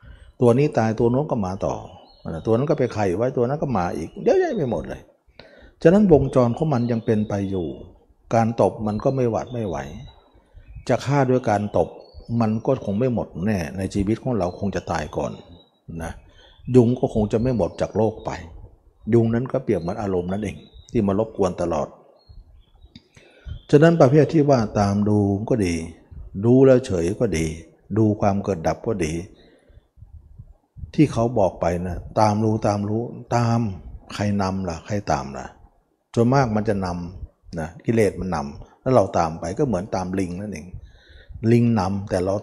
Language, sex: Thai, male